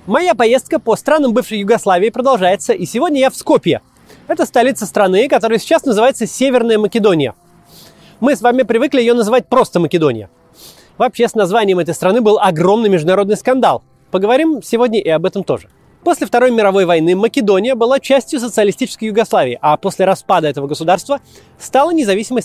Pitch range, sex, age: 190-255 Hz, male, 20-39